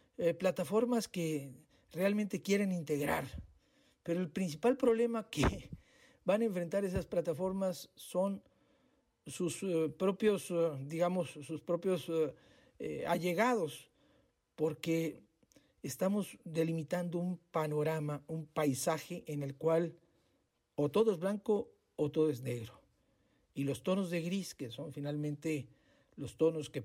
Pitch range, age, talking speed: 145-190 Hz, 50-69, 125 wpm